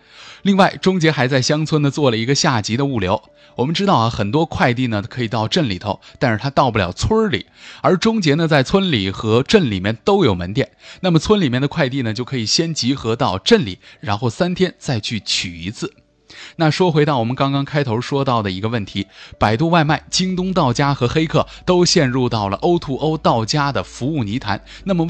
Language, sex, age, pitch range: Chinese, male, 20-39, 110-160 Hz